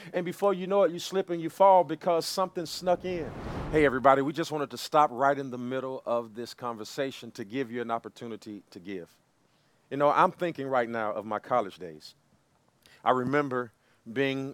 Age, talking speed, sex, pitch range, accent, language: 40-59, 200 wpm, male, 115-150 Hz, American, English